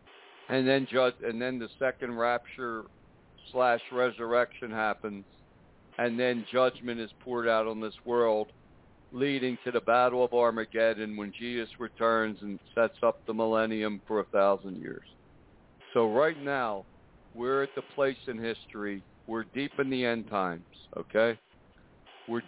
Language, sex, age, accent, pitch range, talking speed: English, male, 60-79, American, 110-125 Hz, 145 wpm